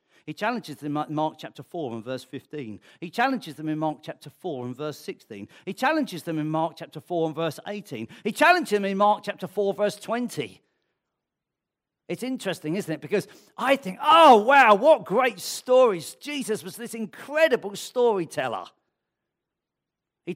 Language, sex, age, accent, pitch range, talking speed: English, male, 50-69, British, 150-230 Hz, 170 wpm